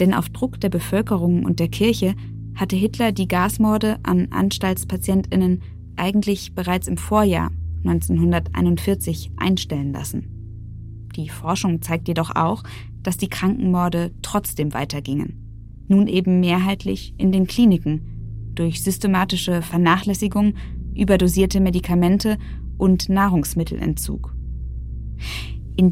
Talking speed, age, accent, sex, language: 105 wpm, 20-39, German, female, German